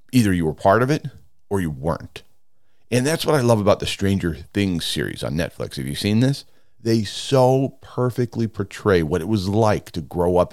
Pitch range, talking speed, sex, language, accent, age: 90-120 Hz, 205 wpm, male, English, American, 40-59